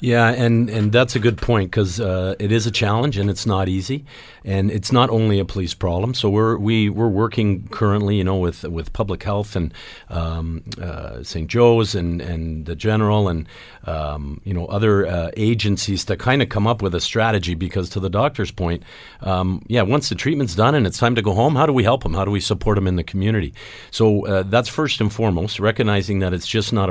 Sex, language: male, English